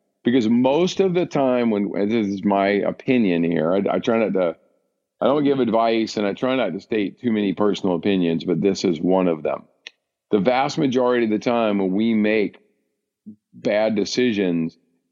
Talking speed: 185 wpm